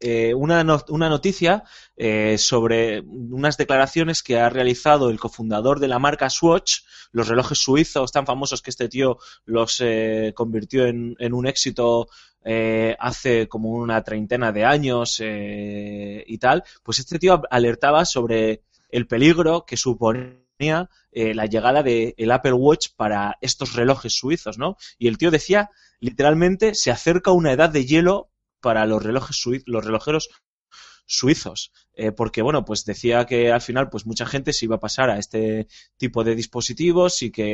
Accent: Spanish